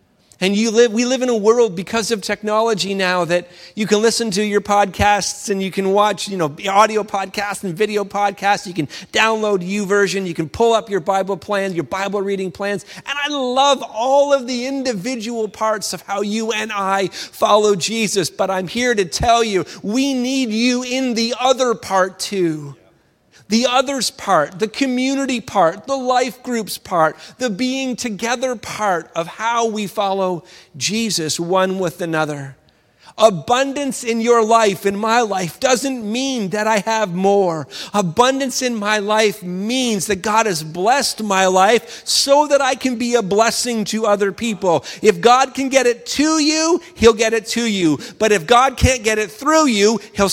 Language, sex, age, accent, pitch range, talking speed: English, male, 40-59, American, 195-240 Hz, 180 wpm